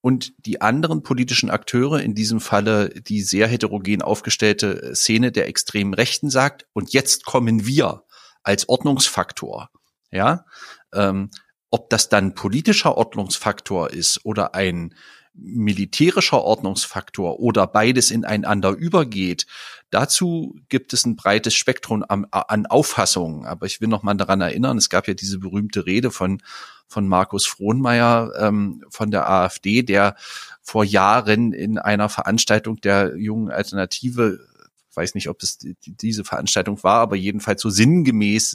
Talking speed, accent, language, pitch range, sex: 140 wpm, German, German, 100-120 Hz, male